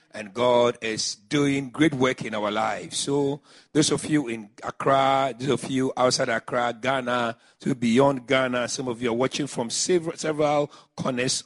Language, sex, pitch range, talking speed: English, male, 120-145 Hz, 175 wpm